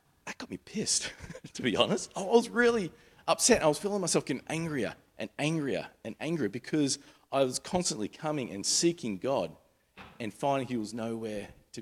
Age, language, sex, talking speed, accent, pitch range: 40-59, English, male, 180 wpm, Australian, 100-135 Hz